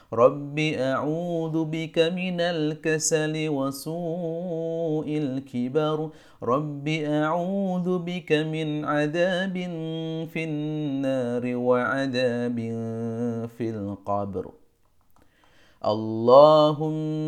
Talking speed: 65 wpm